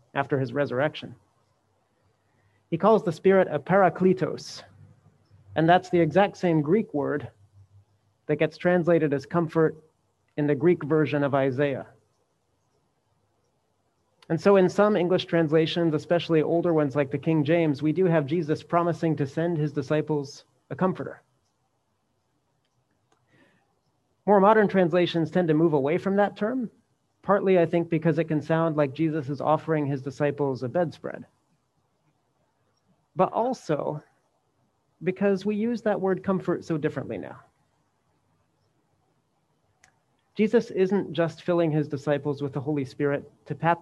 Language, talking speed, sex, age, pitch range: English, 135 wpm, male, 30-49, 135-170 Hz